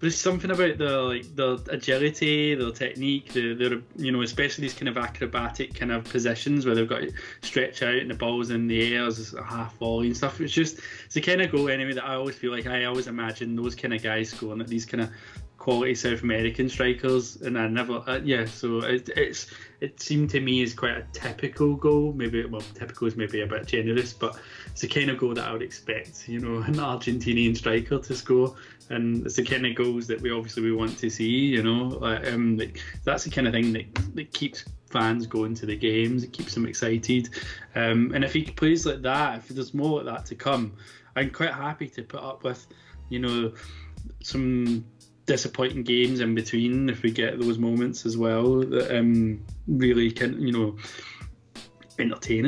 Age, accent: 20-39, British